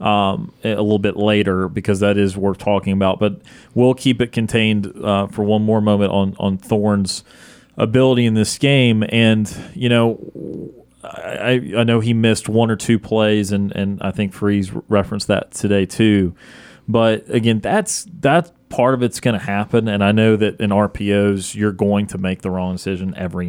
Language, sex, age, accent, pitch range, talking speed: English, male, 30-49, American, 95-115 Hz, 185 wpm